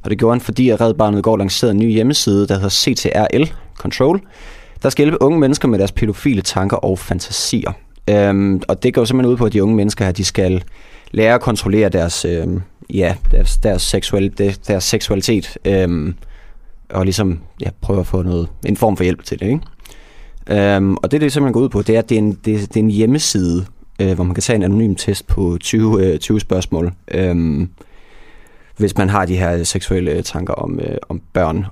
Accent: native